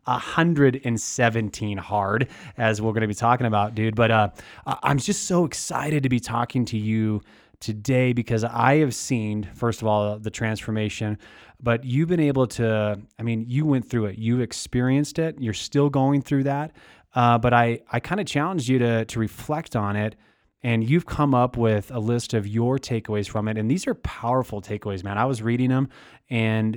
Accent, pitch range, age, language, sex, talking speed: American, 110-145 Hz, 20-39, English, male, 195 wpm